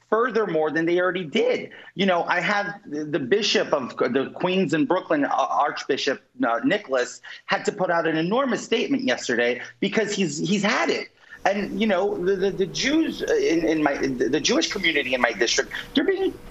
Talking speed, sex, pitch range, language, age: 175 wpm, male, 160-220 Hz, English, 30-49